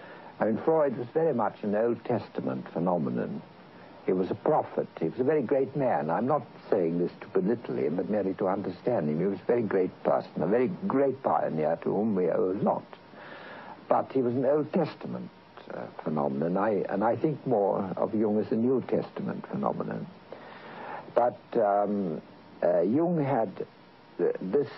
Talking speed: 175 wpm